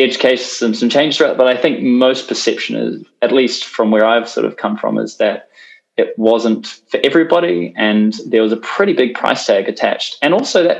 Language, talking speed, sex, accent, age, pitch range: English, 210 wpm, male, Australian, 20-39, 110-170 Hz